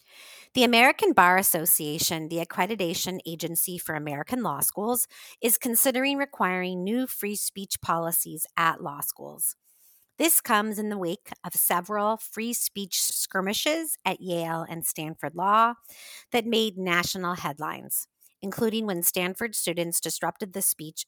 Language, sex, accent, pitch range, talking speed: English, female, American, 170-225 Hz, 135 wpm